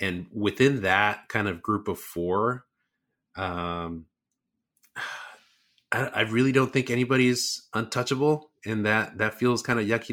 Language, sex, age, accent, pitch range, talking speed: English, male, 30-49, American, 85-110 Hz, 135 wpm